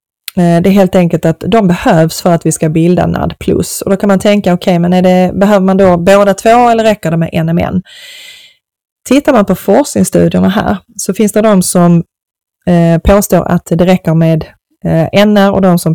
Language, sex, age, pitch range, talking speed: Swedish, female, 20-39, 165-200 Hz, 190 wpm